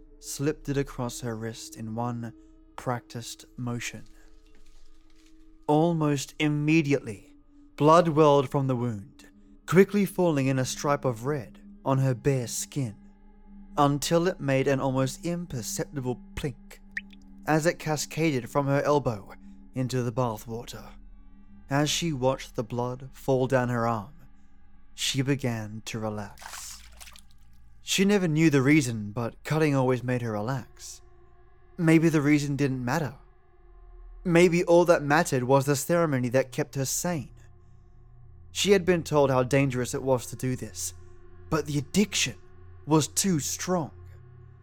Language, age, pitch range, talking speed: English, 20-39, 110-150 Hz, 135 wpm